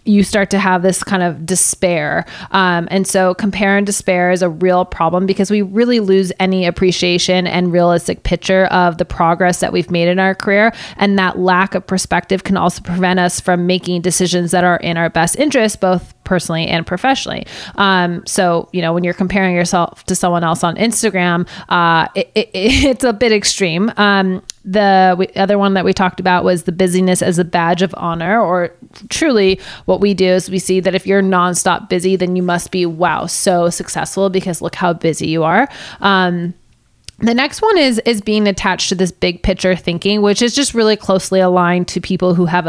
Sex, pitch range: female, 175-200 Hz